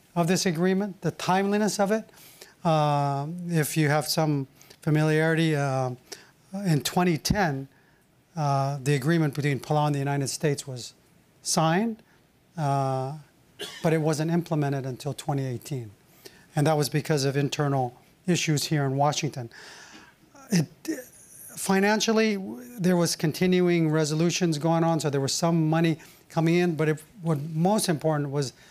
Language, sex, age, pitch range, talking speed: English, male, 40-59, 145-175 Hz, 135 wpm